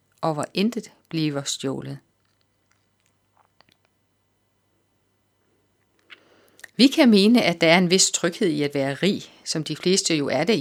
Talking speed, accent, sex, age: 135 wpm, native, female, 30-49